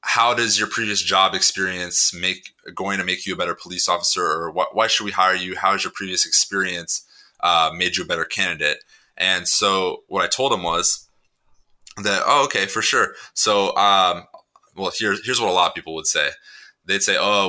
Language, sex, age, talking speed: English, male, 20-39, 205 wpm